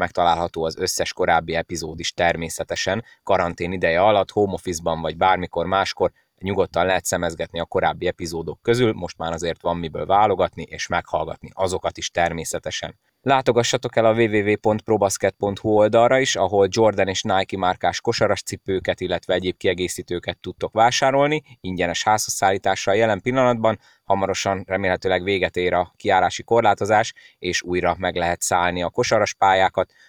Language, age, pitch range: Hungarian, 30-49, 90-110 Hz